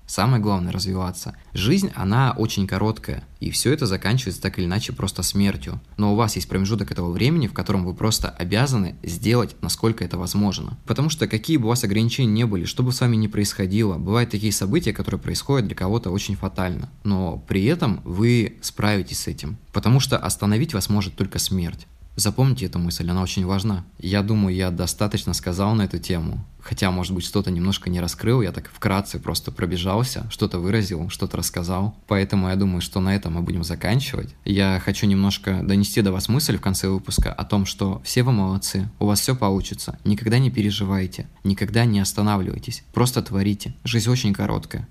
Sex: male